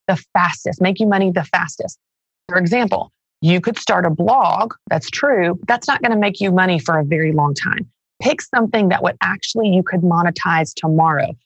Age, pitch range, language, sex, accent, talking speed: 30-49, 165-210 Hz, English, female, American, 195 wpm